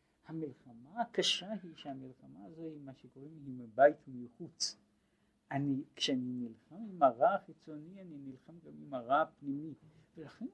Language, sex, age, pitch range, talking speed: Hebrew, male, 60-79, 120-200 Hz, 125 wpm